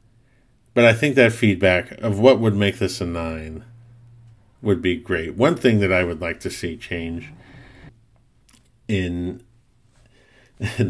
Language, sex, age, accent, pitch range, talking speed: English, male, 50-69, American, 95-120 Hz, 145 wpm